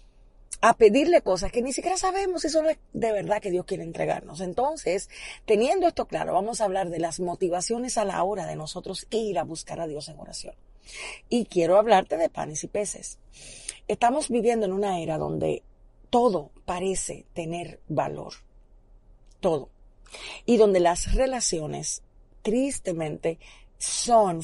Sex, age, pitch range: female, 40-59, 165-220 Hz